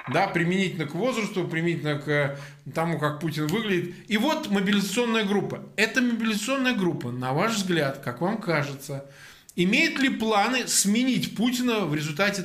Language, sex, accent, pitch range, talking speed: Russian, male, native, 145-200 Hz, 140 wpm